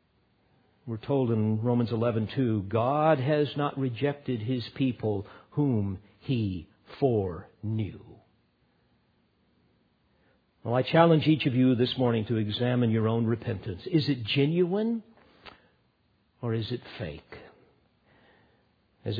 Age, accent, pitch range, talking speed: 50-69, American, 110-150 Hz, 115 wpm